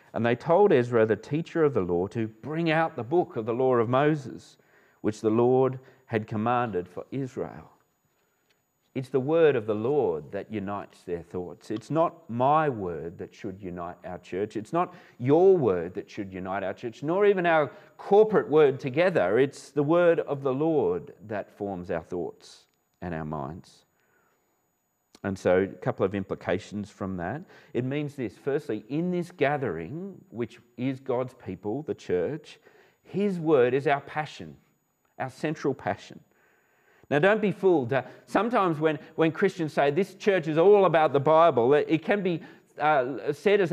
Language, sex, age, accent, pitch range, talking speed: English, male, 40-59, Australian, 120-175 Hz, 170 wpm